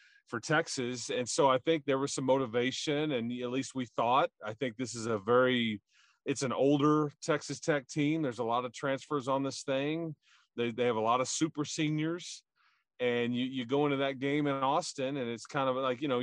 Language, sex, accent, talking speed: English, male, American, 220 wpm